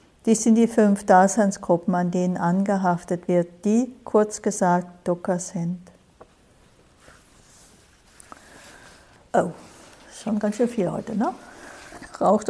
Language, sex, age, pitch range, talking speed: English, female, 50-69, 180-210 Hz, 105 wpm